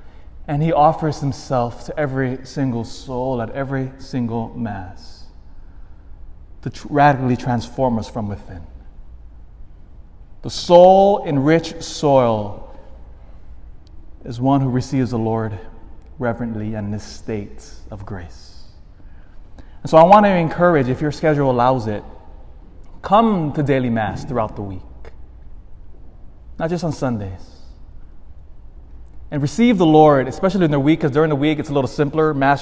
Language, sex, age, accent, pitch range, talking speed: English, male, 20-39, American, 90-150 Hz, 135 wpm